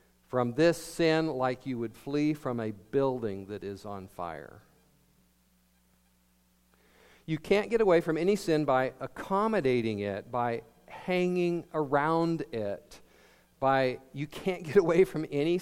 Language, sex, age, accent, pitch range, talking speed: English, male, 50-69, American, 110-155 Hz, 135 wpm